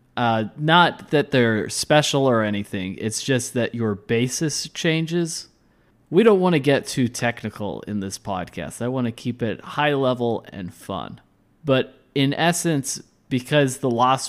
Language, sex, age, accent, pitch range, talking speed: English, male, 20-39, American, 110-135 Hz, 160 wpm